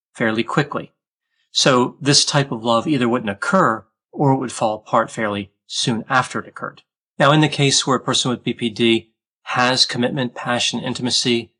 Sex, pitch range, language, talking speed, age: male, 115-140 Hz, English, 170 wpm, 30-49